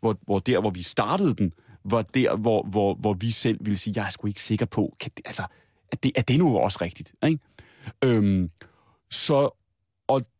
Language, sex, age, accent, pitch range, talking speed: Danish, male, 30-49, native, 100-135 Hz, 210 wpm